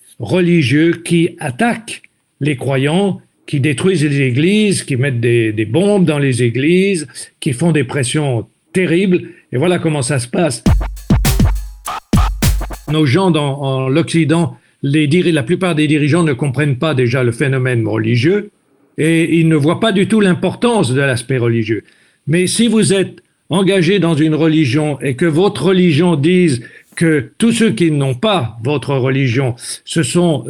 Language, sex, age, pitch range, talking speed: French, male, 60-79, 140-180 Hz, 155 wpm